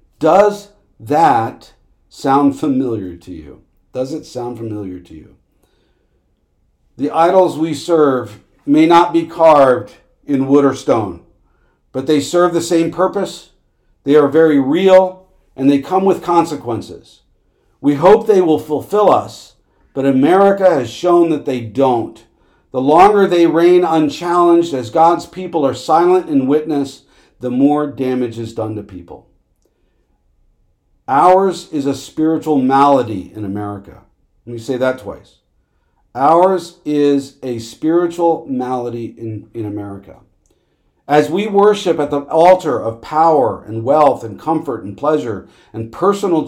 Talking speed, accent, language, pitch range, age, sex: 140 wpm, American, English, 115-170 Hz, 50-69, male